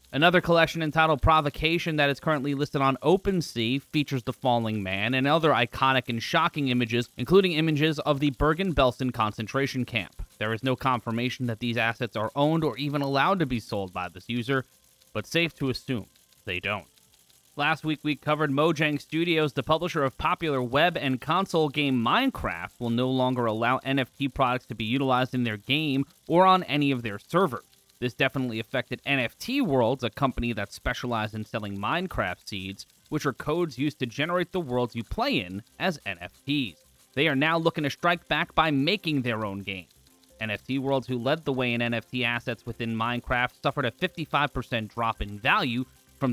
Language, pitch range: English, 115-150 Hz